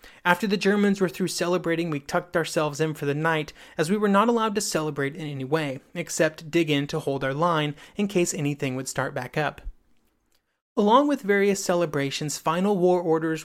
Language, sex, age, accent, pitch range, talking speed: English, male, 30-49, American, 155-195 Hz, 195 wpm